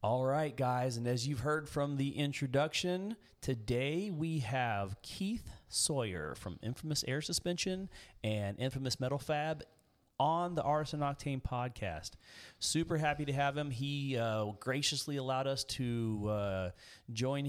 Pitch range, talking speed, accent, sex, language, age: 95-130 Hz, 145 wpm, American, male, English, 30-49